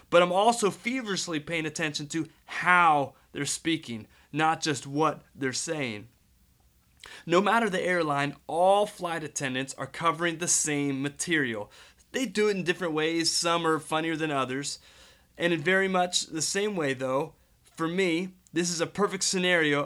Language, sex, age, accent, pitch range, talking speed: English, male, 30-49, American, 155-195 Hz, 160 wpm